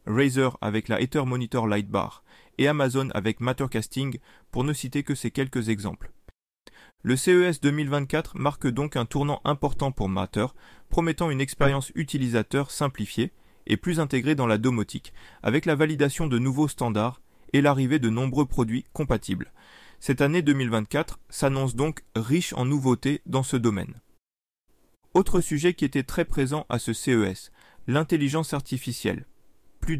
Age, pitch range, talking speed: 30-49, 115-150 Hz, 145 wpm